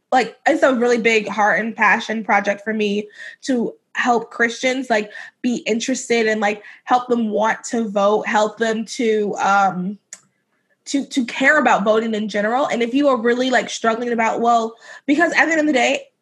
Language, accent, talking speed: English, American, 190 wpm